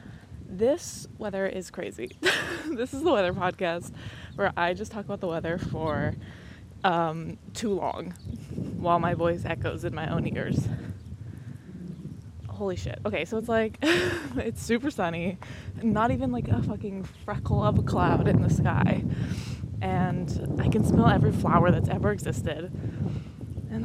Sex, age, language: female, 20-39, English